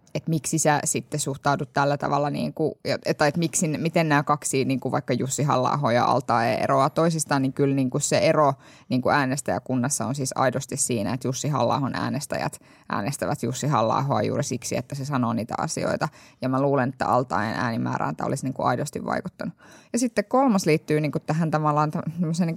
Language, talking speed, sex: Finnish, 190 wpm, female